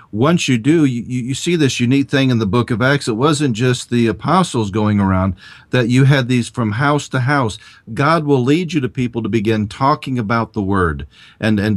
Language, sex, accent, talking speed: English, male, American, 220 wpm